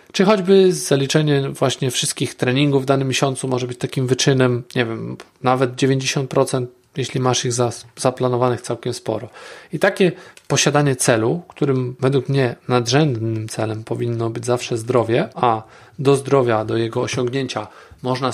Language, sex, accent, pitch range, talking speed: Polish, male, native, 125-150 Hz, 140 wpm